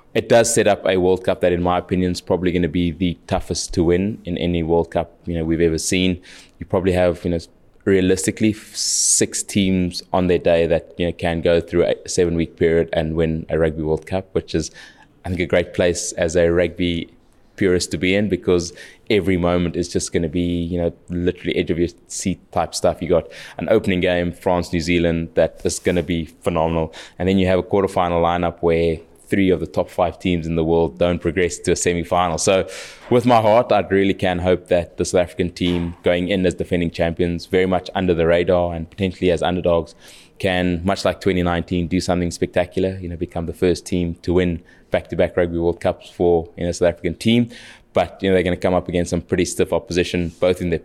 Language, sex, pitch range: English, male, 85-90 Hz